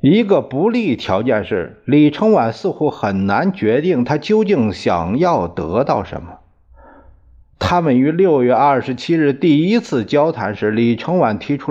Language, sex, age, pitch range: Chinese, male, 50-69, 105-150 Hz